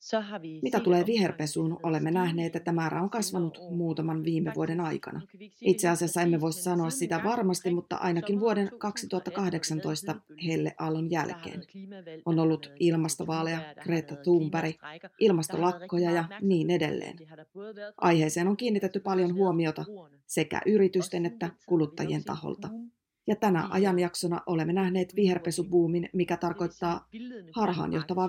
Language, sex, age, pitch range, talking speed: Finnish, female, 30-49, 165-185 Hz, 115 wpm